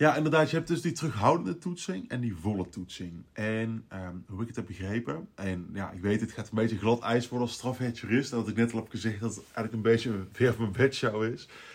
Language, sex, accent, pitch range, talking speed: Dutch, male, Dutch, 105-135 Hz, 240 wpm